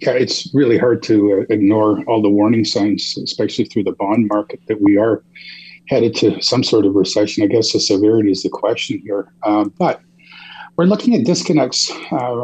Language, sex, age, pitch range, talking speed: English, male, 40-59, 105-155 Hz, 190 wpm